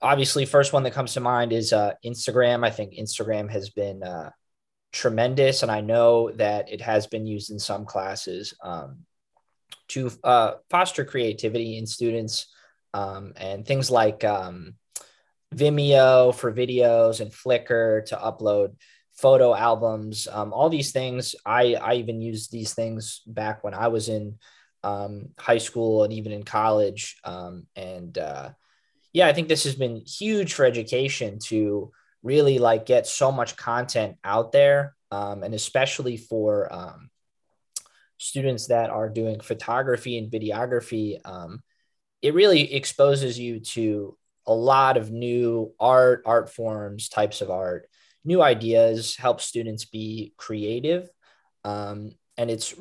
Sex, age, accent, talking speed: male, 20-39, American, 145 wpm